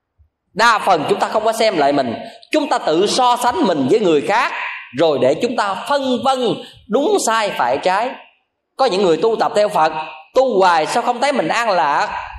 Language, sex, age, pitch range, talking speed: Vietnamese, male, 20-39, 175-280 Hz, 210 wpm